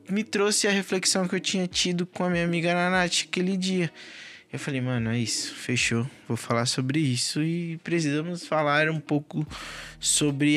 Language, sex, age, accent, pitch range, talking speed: Portuguese, male, 20-39, Brazilian, 125-170 Hz, 175 wpm